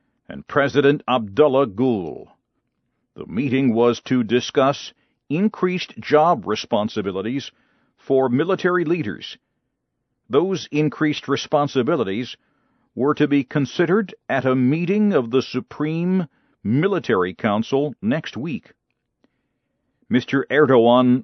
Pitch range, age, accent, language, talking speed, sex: 120-155 Hz, 50-69, American, English, 95 wpm, male